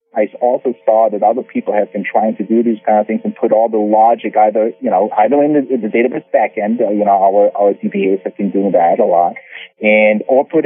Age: 40-59